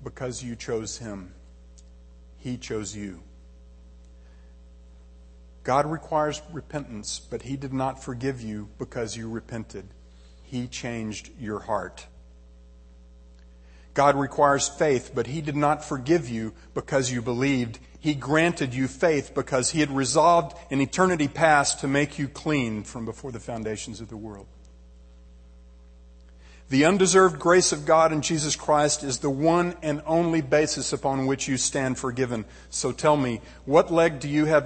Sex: male